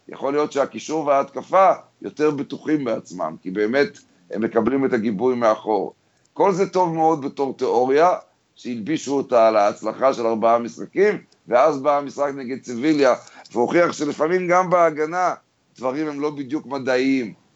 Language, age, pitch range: Hebrew, 50-69, 125-155 Hz